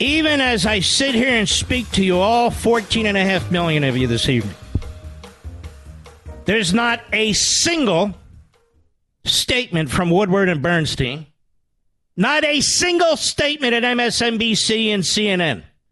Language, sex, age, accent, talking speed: English, male, 50-69, American, 135 wpm